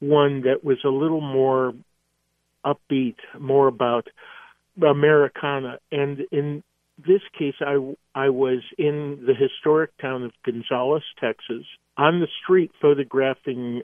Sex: male